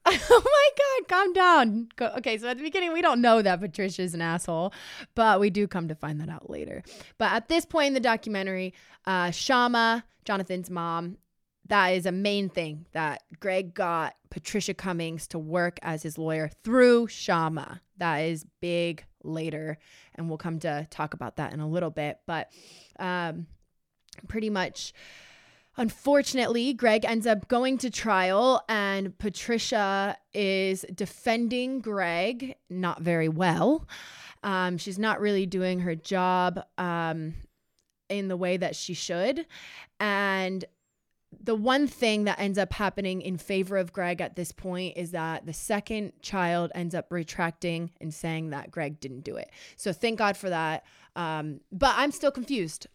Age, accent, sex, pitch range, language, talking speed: 20-39, American, female, 170-220 Hz, English, 160 wpm